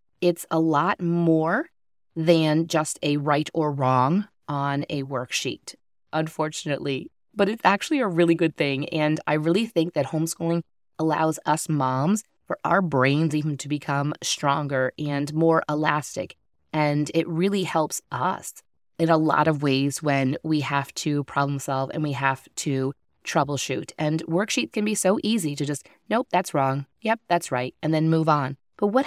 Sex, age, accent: female, 20-39, American